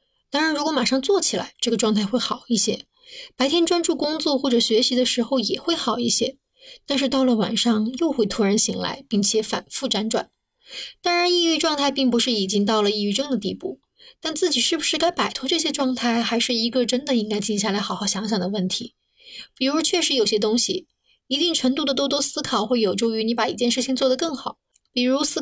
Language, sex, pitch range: Chinese, female, 220-290 Hz